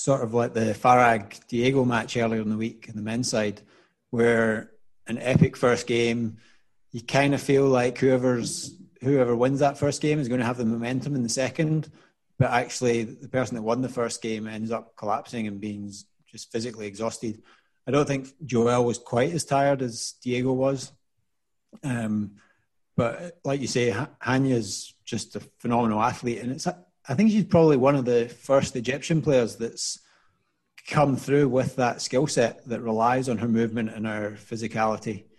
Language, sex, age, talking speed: English, male, 30-49, 180 wpm